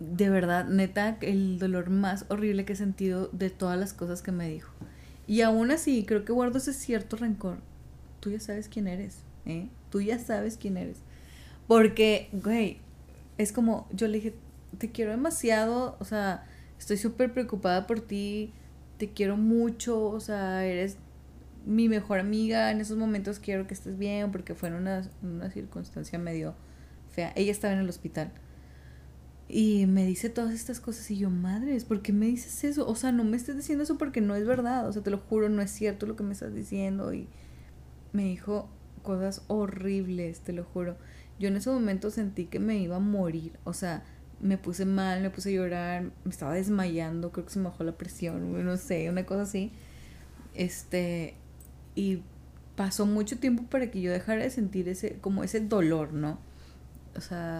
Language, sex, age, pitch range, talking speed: Spanish, female, 20-39, 175-215 Hz, 190 wpm